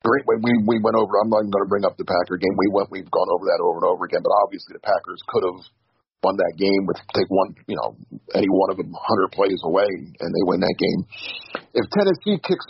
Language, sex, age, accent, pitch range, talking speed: English, male, 50-69, American, 110-165 Hz, 255 wpm